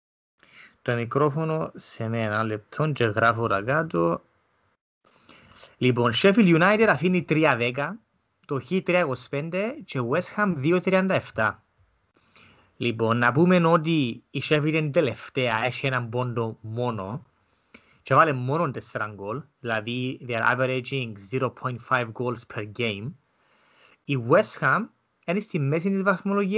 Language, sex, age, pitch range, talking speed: Greek, male, 30-49, 115-160 Hz, 100 wpm